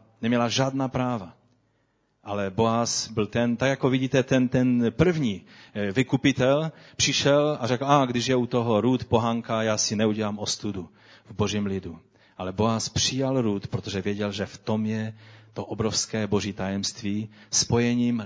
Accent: native